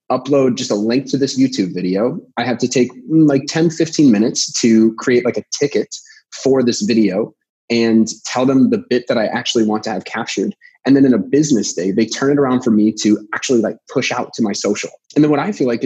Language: English